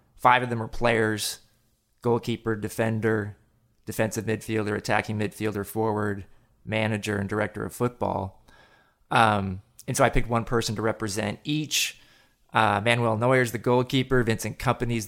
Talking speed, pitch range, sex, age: 145 wpm, 110-125 Hz, male, 20-39